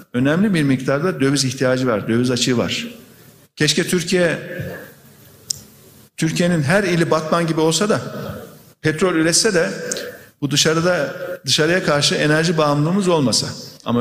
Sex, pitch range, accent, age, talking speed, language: male, 130-180 Hz, native, 50-69, 125 wpm, Turkish